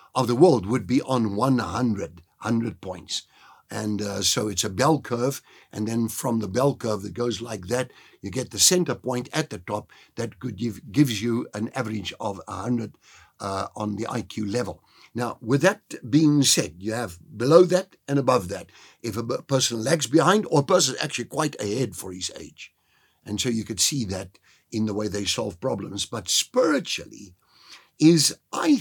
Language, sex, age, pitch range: English, male, 60-79, 115-160 Hz